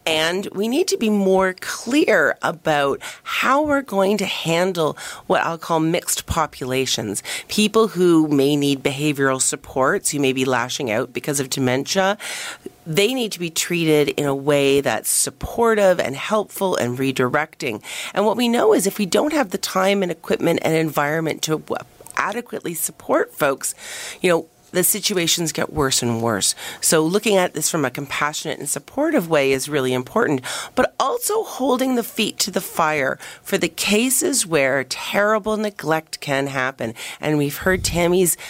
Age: 40-59